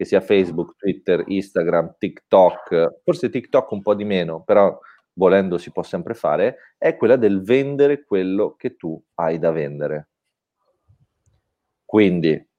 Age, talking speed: 30-49, 135 wpm